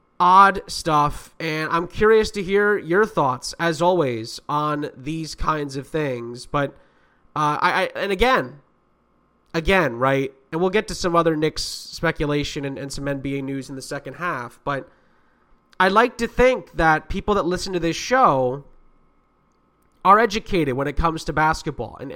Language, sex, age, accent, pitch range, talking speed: English, male, 20-39, American, 140-190 Hz, 165 wpm